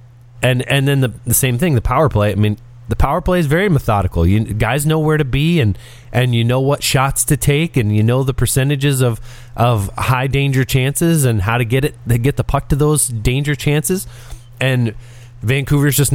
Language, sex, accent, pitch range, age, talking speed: English, male, American, 100-125 Hz, 30-49, 215 wpm